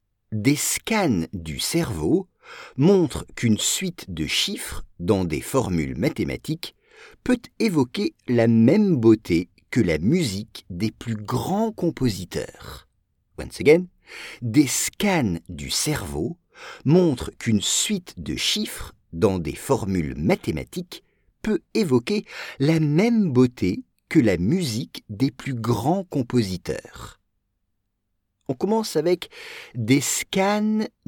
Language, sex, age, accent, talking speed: English, male, 50-69, French, 110 wpm